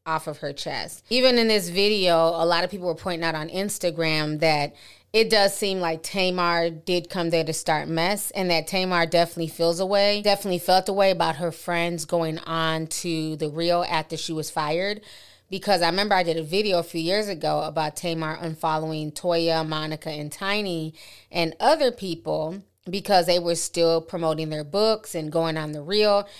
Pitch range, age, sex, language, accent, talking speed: 160-185 Hz, 30-49, female, English, American, 195 wpm